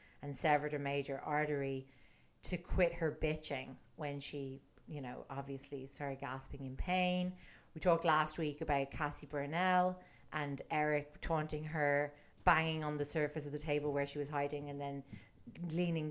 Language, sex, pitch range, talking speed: English, female, 140-170 Hz, 160 wpm